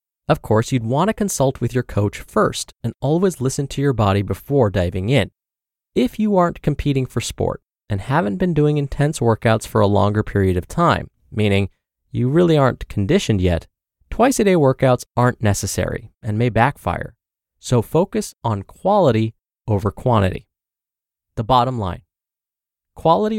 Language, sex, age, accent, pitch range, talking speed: English, male, 20-39, American, 105-145 Hz, 155 wpm